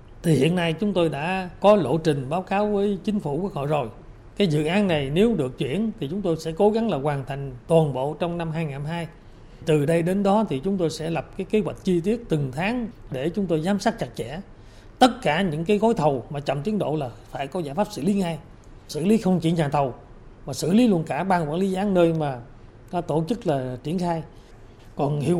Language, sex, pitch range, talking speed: Vietnamese, male, 145-195 Hz, 245 wpm